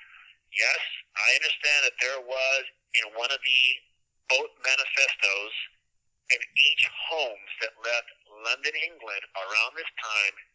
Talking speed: 125 wpm